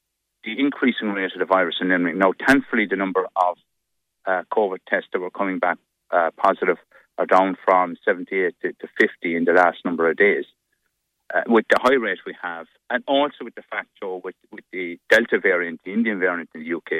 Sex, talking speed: male, 200 wpm